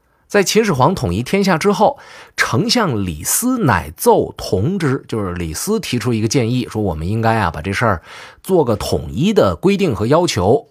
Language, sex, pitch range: Chinese, male, 100-155 Hz